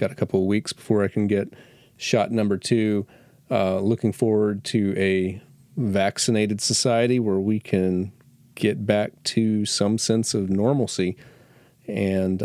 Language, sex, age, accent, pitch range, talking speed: English, male, 40-59, American, 100-120 Hz, 145 wpm